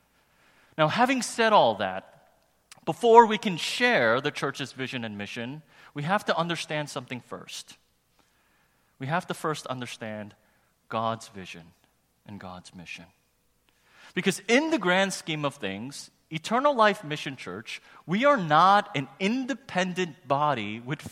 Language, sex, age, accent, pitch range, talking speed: English, male, 30-49, American, 115-185 Hz, 135 wpm